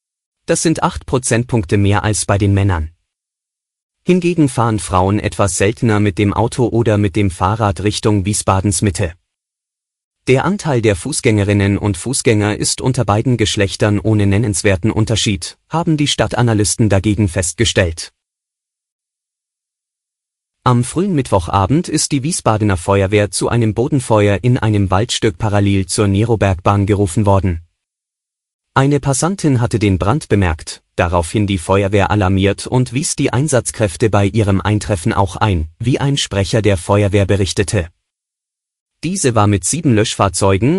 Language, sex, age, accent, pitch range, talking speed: German, male, 30-49, German, 100-125 Hz, 130 wpm